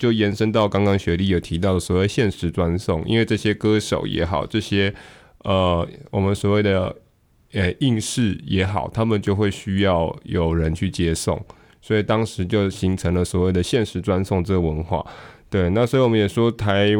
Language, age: Chinese, 20-39